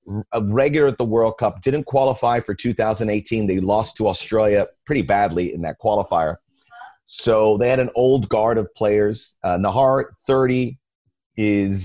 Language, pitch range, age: English, 105-125 Hz, 30-49